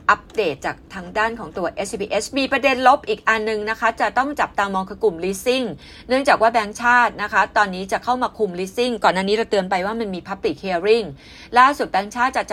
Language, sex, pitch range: Thai, female, 185-235 Hz